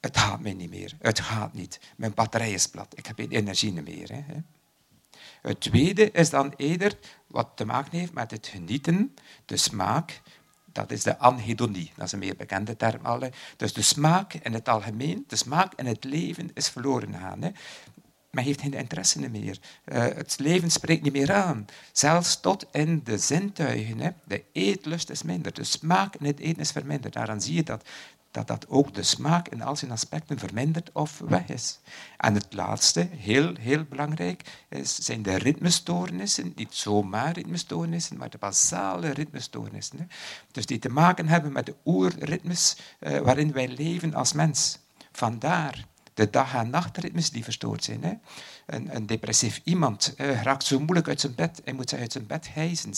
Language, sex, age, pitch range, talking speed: Dutch, male, 60-79, 115-165 Hz, 175 wpm